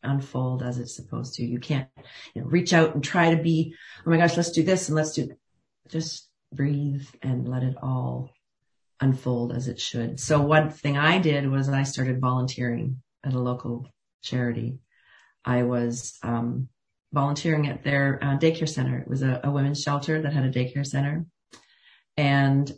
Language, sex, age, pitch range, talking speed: English, female, 40-59, 135-160 Hz, 175 wpm